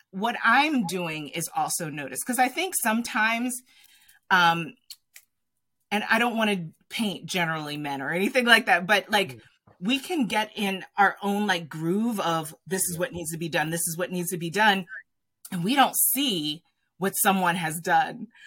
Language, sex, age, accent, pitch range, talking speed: English, female, 30-49, American, 175-260 Hz, 180 wpm